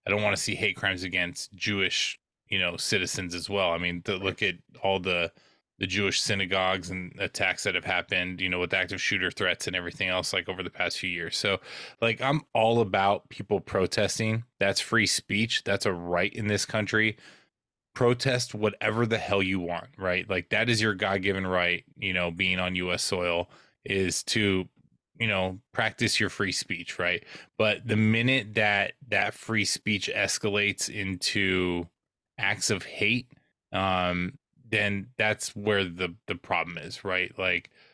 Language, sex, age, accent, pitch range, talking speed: English, male, 20-39, American, 95-115 Hz, 175 wpm